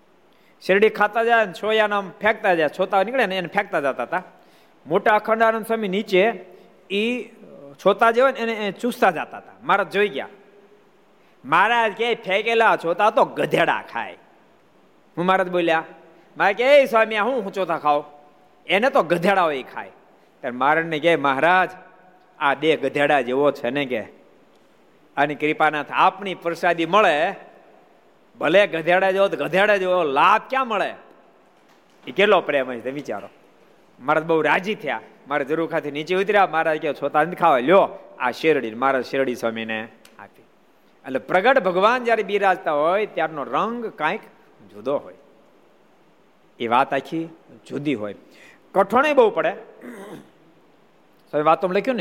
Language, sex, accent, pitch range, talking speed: Gujarati, male, native, 155-210 Hz, 95 wpm